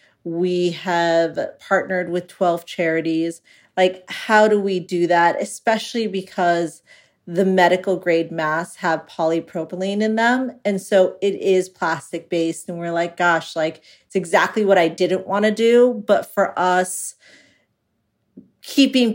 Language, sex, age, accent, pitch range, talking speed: English, female, 40-59, American, 170-195 Hz, 140 wpm